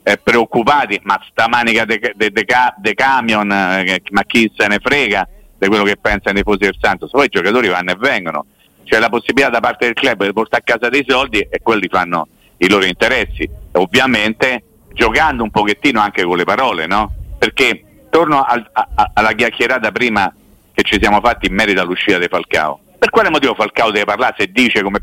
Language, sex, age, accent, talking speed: Italian, male, 50-69, native, 200 wpm